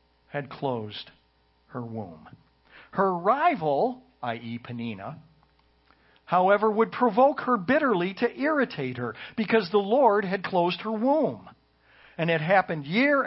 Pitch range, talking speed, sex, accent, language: 135-195 Hz, 120 wpm, male, American, English